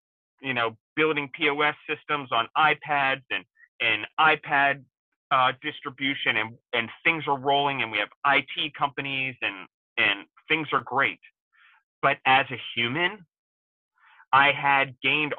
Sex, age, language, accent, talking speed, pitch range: male, 30-49, English, American, 135 wpm, 115-140 Hz